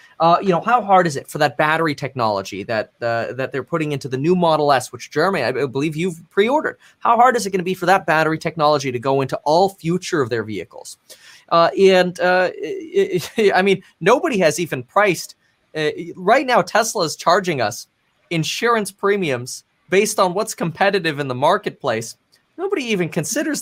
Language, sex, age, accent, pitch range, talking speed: English, male, 20-39, American, 145-200 Hz, 195 wpm